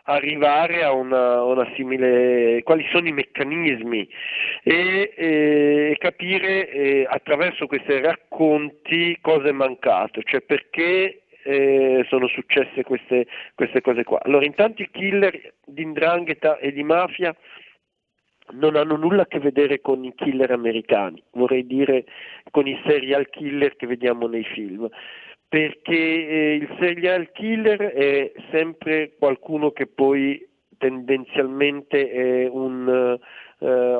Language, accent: Italian, native